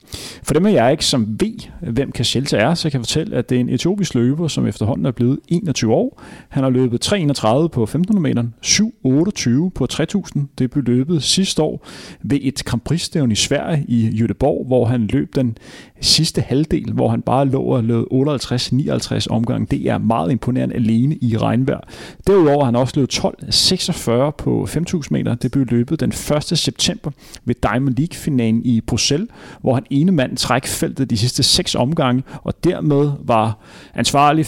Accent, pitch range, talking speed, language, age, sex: native, 120-150 Hz, 180 wpm, Danish, 30-49, male